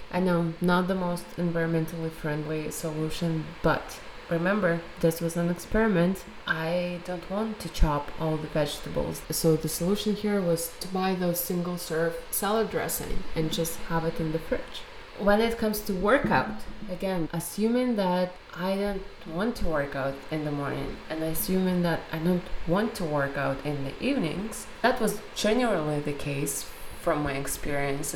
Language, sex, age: English, female, 20-39